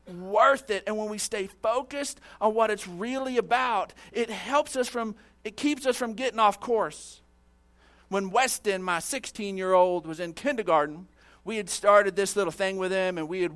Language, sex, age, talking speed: English, male, 40-59, 190 wpm